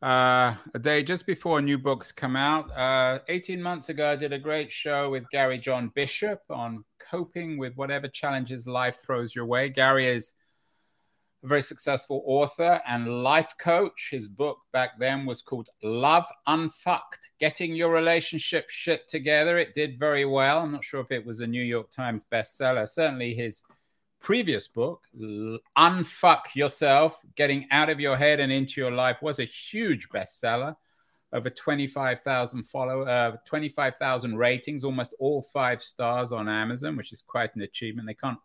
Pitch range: 125-160 Hz